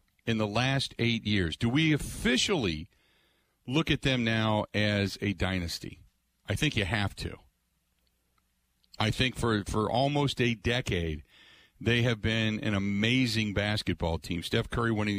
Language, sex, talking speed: English, male, 145 wpm